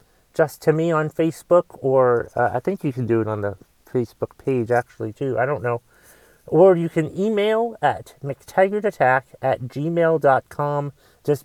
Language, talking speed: English, 160 wpm